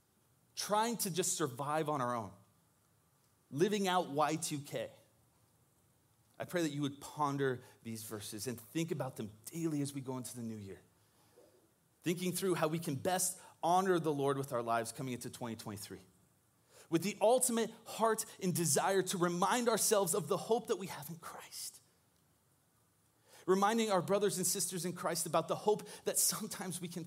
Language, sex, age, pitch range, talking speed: English, male, 30-49, 125-185 Hz, 170 wpm